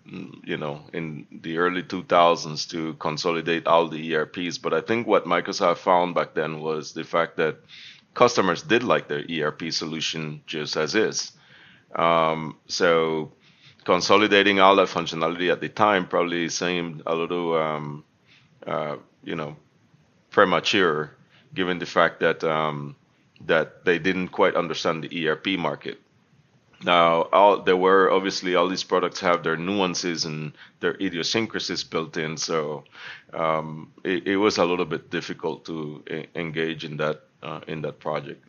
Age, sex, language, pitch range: 30-49, male, English, 80-95 Hz